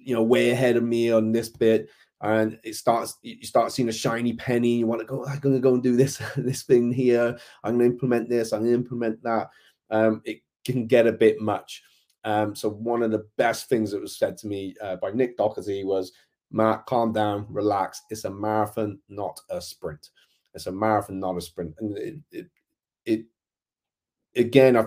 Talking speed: 205 wpm